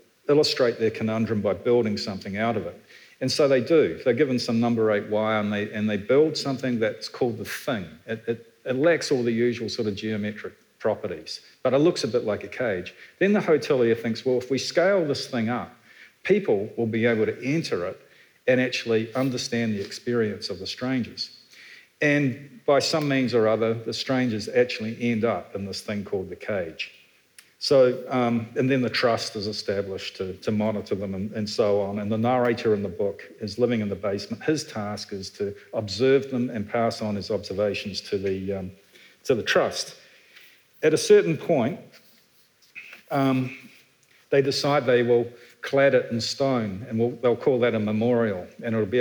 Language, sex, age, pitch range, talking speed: English, male, 50-69, 105-130 Hz, 195 wpm